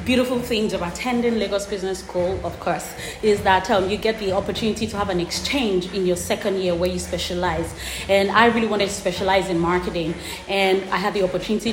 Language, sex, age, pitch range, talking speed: English, female, 30-49, 185-230 Hz, 205 wpm